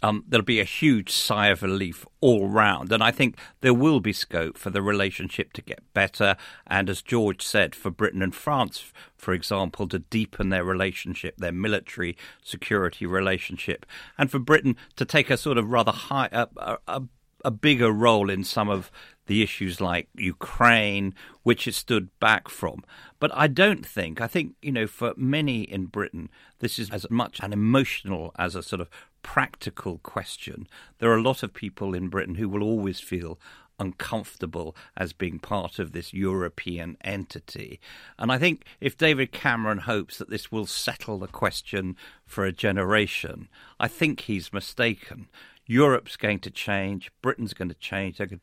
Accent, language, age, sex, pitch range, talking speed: British, English, 50-69, male, 95-120 Hz, 175 wpm